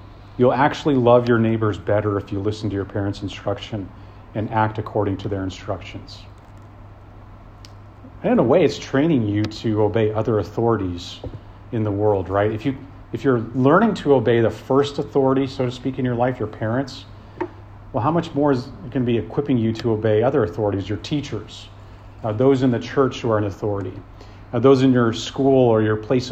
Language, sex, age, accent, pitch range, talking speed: English, male, 40-59, American, 100-120 Hz, 190 wpm